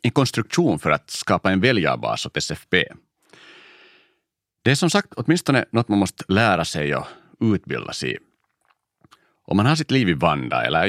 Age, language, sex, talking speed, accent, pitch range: 40-59, Swedish, male, 165 wpm, Finnish, 85-115 Hz